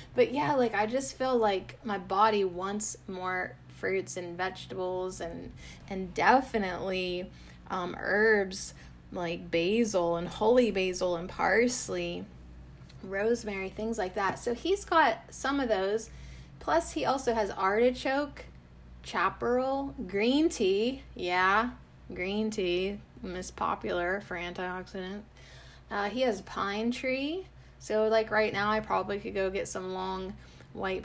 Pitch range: 185-245 Hz